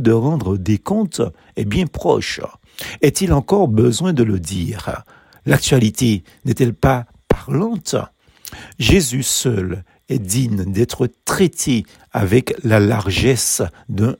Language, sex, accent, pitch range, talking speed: French, male, French, 110-150 Hz, 115 wpm